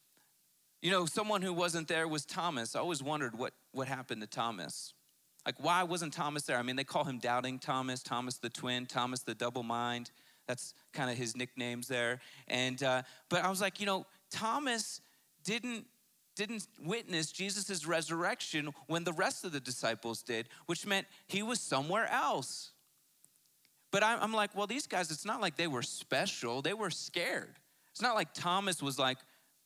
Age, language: 30-49, English